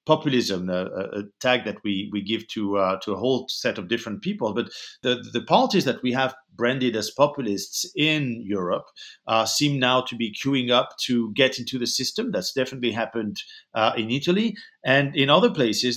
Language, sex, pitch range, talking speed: English, male, 110-140 Hz, 190 wpm